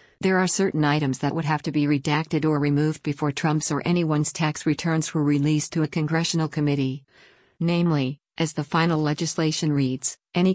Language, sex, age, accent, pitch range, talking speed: English, female, 50-69, American, 145-170 Hz, 175 wpm